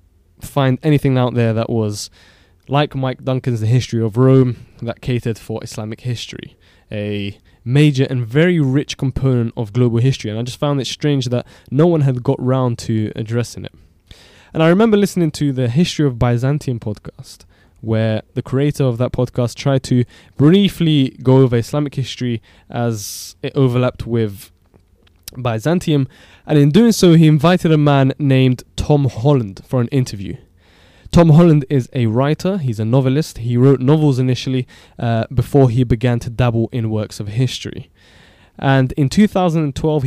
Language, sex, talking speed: English, male, 165 wpm